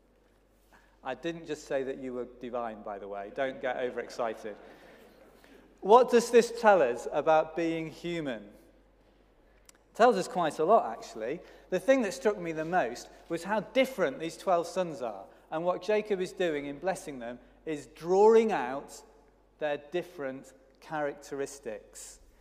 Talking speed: 155 wpm